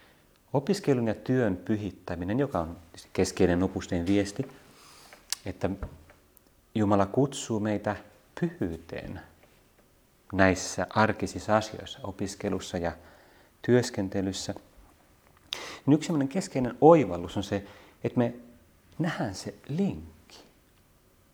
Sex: male